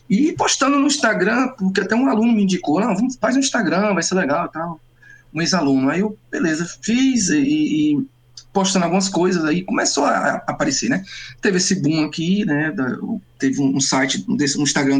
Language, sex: Portuguese, male